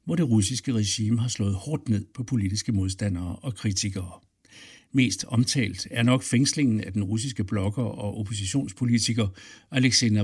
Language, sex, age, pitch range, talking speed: Danish, male, 60-79, 105-130 Hz, 145 wpm